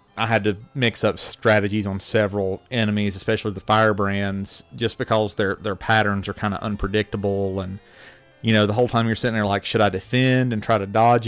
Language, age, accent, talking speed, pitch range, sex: English, 30-49, American, 200 wpm, 100-115 Hz, male